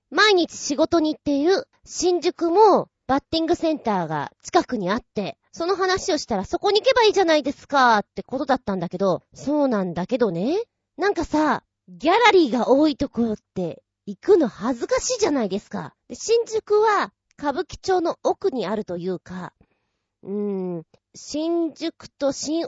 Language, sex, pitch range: Japanese, female, 210-350 Hz